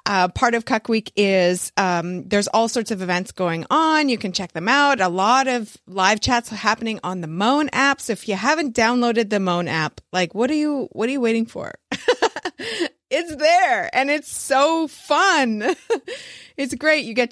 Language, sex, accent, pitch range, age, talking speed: English, female, American, 190-275 Hz, 30-49, 195 wpm